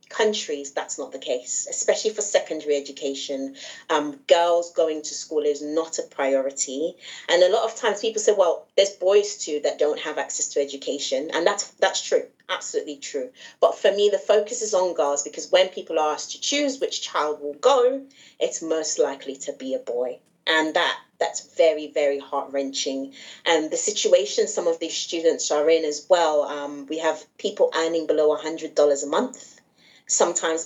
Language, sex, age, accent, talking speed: English, female, 30-49, British, 190 wpm